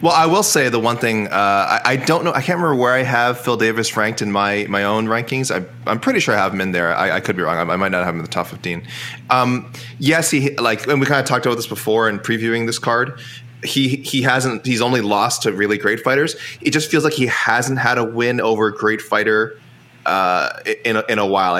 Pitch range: 95-125 Hz